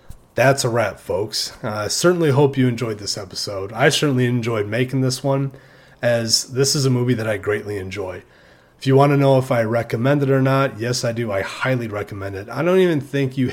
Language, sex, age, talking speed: English, male, 30-49, 215 wpm